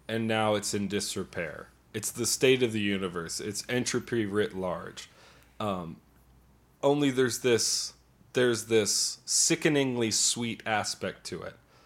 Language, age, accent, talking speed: English, 30-49, American, 130 wpm